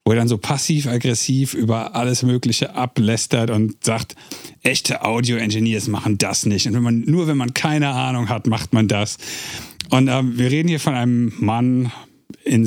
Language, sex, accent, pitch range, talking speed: German, male, German, 110-135 Hz, 175 wpm